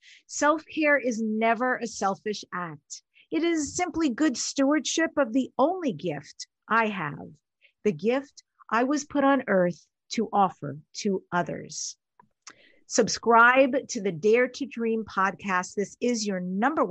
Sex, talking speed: female, 140 wpm